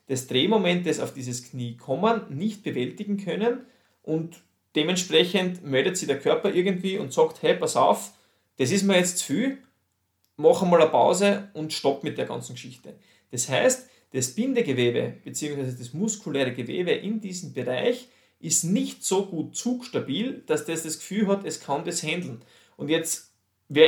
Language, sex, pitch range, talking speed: German, male, 135-210 Hz, 165 wpm